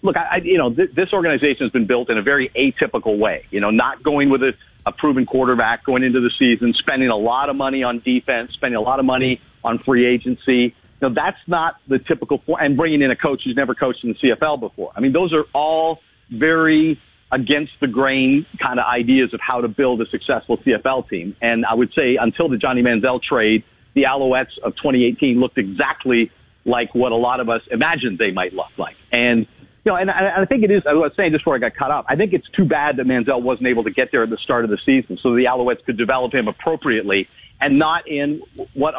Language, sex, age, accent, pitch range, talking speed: English, male, 50-69, American, 120-150 Hz, 235 wpm